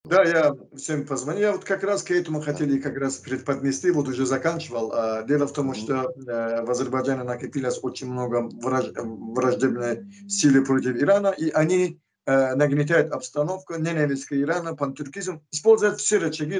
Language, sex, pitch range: Russian, male, 135-165 Hz